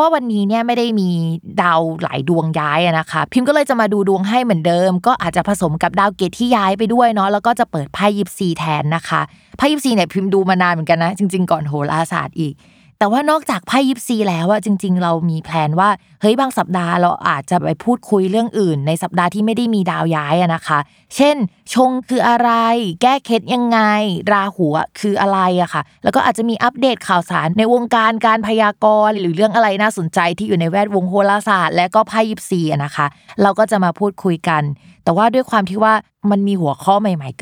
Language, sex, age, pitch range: Thai, female, 20-39, 170-220 Hz